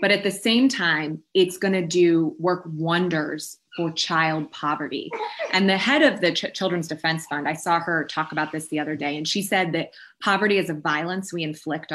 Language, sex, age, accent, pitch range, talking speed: English, female, 20-39, American, 165-210 Hz, 210 wpm